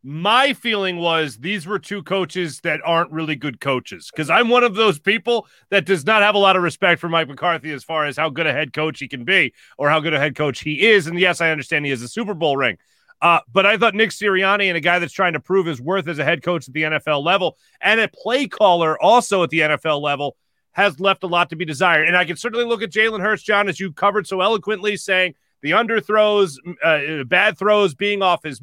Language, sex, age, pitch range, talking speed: English, male, 30-49, 165-205 Hz, 250 wpm